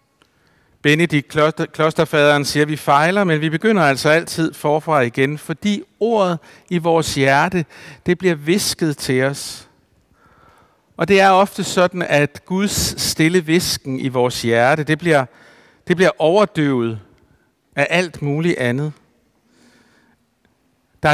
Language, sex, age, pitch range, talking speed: Danish, male, 60-79, 125-170 Hz, 130 wpm